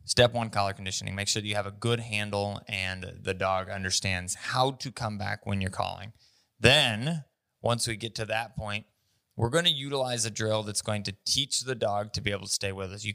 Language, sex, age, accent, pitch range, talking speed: English, male, 20-39, American, 100-115 Hz, 230 wpm